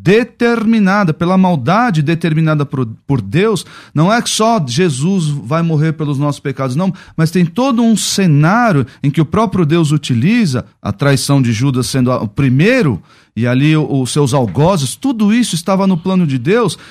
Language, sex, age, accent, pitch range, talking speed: Portuguese, male, 40-59, Brazilian, 135-205 Hz, 170 wpm